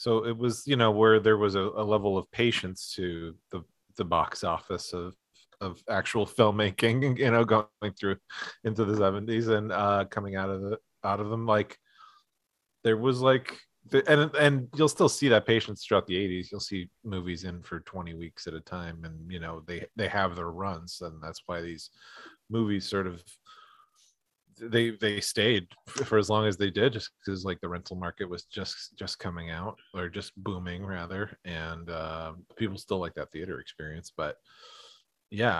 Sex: male